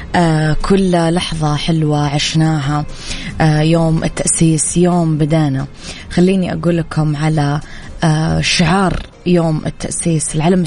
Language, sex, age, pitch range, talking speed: Arabic, female, 20-39, 150-175 Hz, 90 wpm